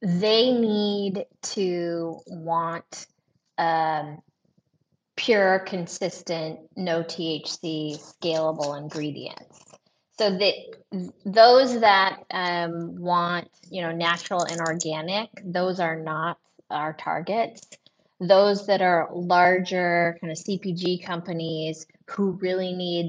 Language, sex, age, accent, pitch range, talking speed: English, female, 20-39, American, 165-200 Hz, 100 wpm